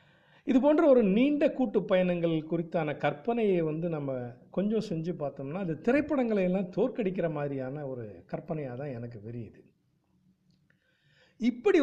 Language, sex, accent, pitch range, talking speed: Tamil, male, native, 145-195 Hz, 115 wpm